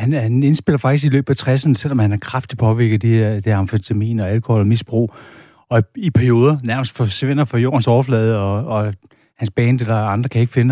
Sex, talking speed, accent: male, 215 wpm, native